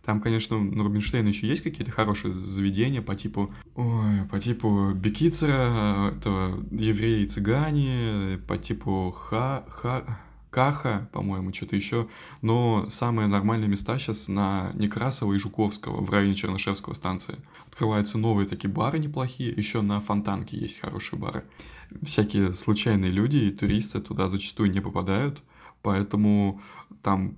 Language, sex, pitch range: Russian, male, 100-115 Hz